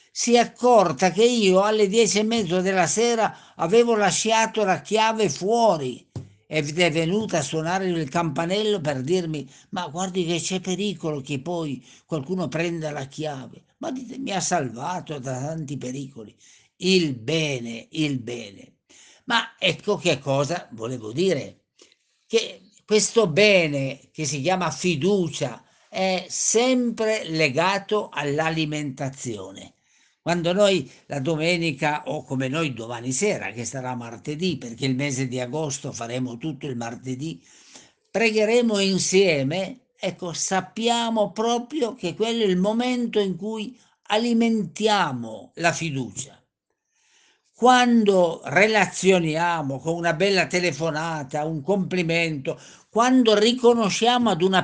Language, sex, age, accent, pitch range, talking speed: Italian, male, 60-79, native, 150-210 Hz, 125 wpm